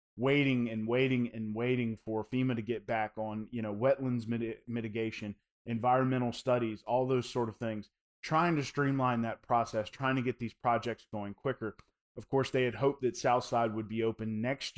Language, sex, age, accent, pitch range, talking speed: English, male, 30-49, American, 110-125 Hz, 185 wpm